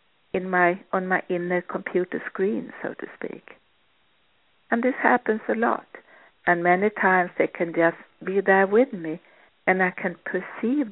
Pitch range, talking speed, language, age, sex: 180-235 Hz, 160 wpm, English, 60-79, female